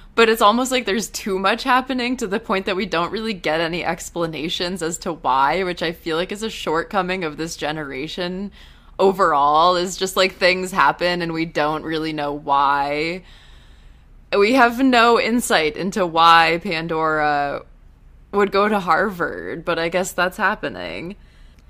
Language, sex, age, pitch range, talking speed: English, female, 20-39, 155-190 Hz, 165 wpm